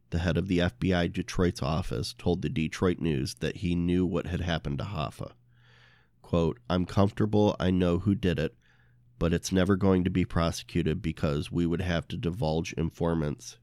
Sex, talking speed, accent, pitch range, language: male, 180 wpm, American, 85-100 Hz, English